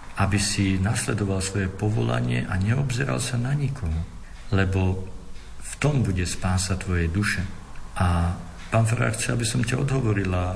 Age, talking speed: 50-69, 135 wpm